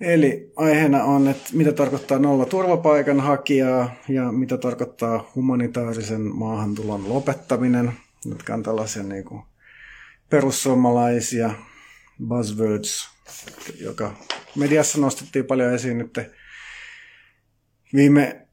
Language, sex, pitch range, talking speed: Finnish, male, 115-135 Hz, 85 wpm